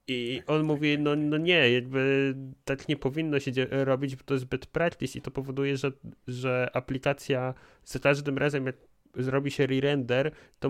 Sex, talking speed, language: male, 180 wpm, Polish